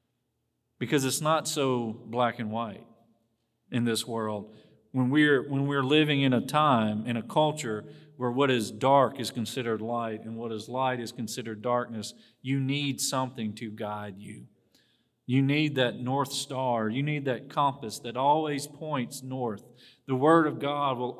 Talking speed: 165 wpm